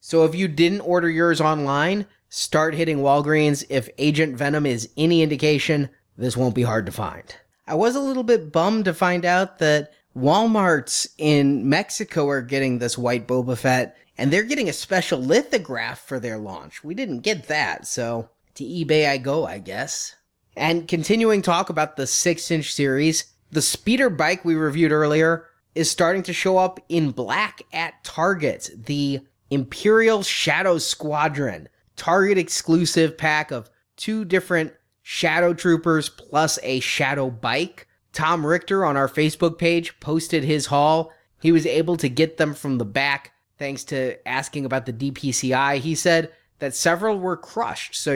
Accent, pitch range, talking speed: American, 135-170 Hz, 160 wpm